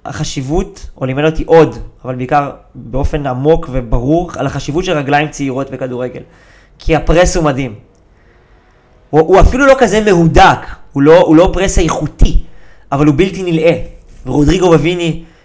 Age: 20-39